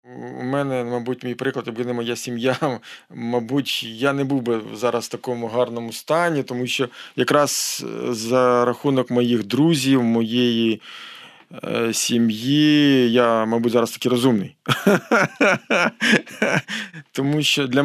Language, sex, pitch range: Ukrainian, male, 120-140 Hz